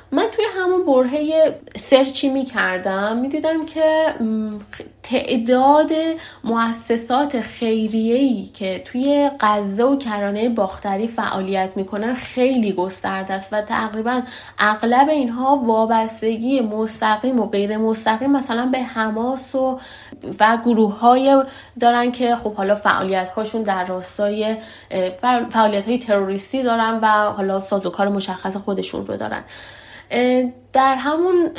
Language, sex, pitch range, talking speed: Persian, female, 195-250 Hz, 110 wpm